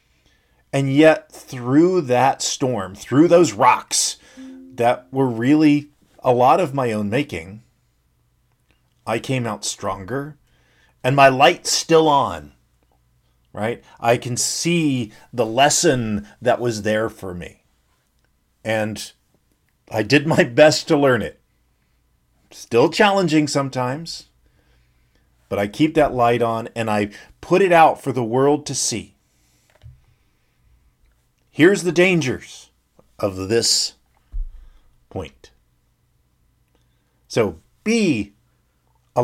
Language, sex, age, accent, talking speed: English, male, 40-59, American, 110 wpm